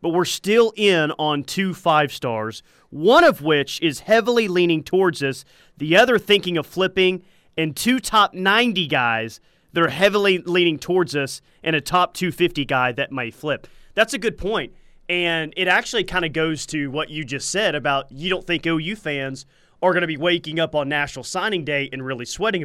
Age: 30-49